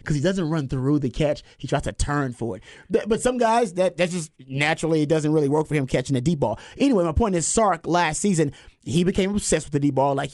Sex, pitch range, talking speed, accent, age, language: male, 135-170 Hz, 260 wpm, American, 30-49, English